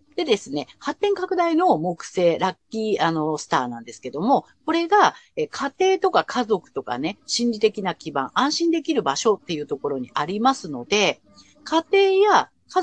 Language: Japanese